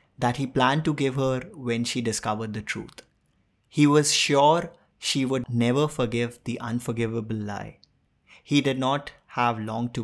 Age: 20-39